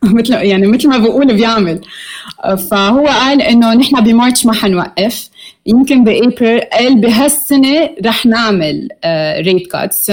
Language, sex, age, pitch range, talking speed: Arabic, female, 20-39, 190-240 Hz, 125 wpm